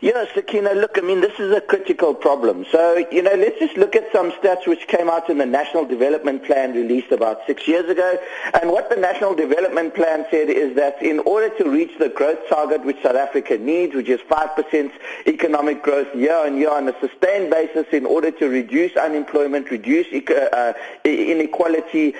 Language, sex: English, male